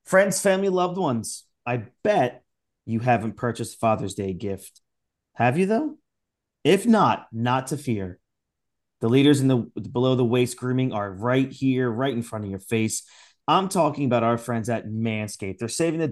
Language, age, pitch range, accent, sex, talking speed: English, 30-49, 110-135 Hz, American, male, 175 wpm